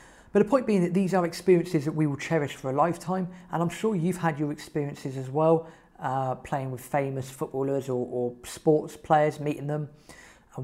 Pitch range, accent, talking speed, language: 130-165 Hz, British, 205 wpm, English